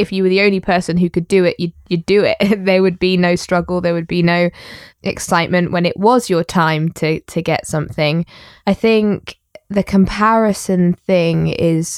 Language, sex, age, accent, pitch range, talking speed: English, female, 20-39, British, 175-205 Hz, 195 wpm